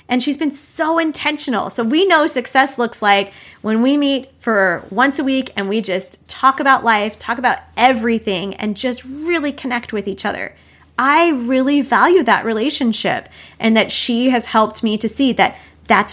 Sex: female